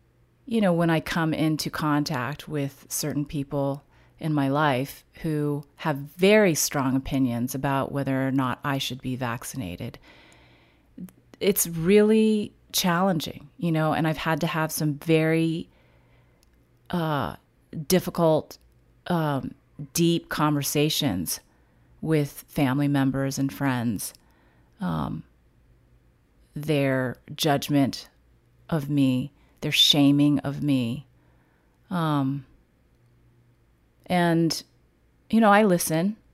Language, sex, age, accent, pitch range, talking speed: English, female, 30-49, American, 135-165 Hz, 105 wpm